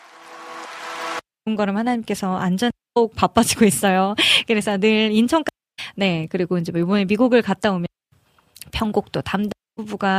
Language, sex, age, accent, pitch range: Korean, female, 20-39, native, 190-235 Hz